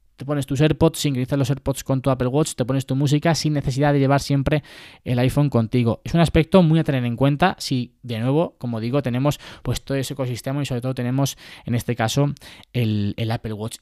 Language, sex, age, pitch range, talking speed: Spanish, male, 20-39, 125-150 Hz, 225 wpm